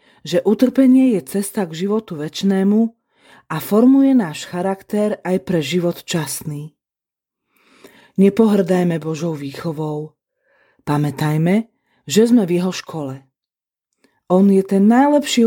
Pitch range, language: 155-200 Hz, Slovak